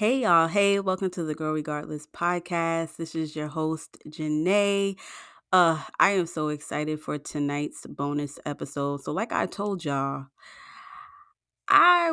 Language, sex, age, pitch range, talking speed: English, female, 30-49, 150-185 Hz, 145 wpm